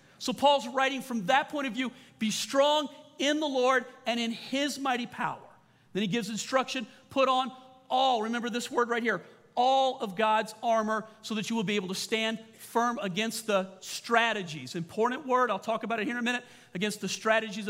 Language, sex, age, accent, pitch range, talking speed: English, male, 40-59, American, 175-235 Hz, 200 wpm